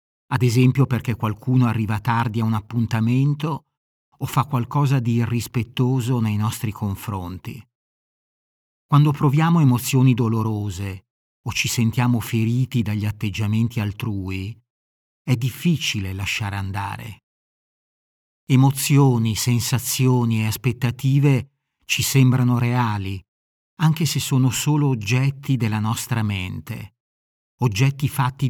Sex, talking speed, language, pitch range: male, 105 wpm, Italian, 110-135 Hz